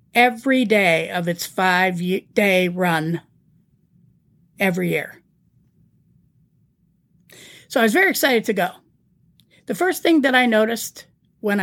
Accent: American